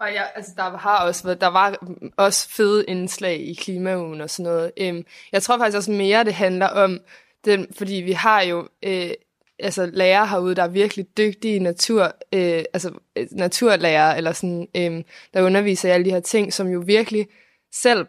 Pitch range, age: 185-215 Hz, 20-39